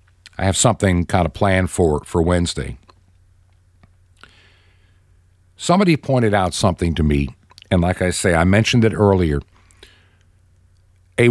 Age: 60-79